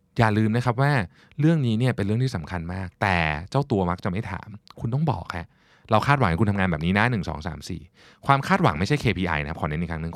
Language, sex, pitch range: Thai, male, 85-120 Hz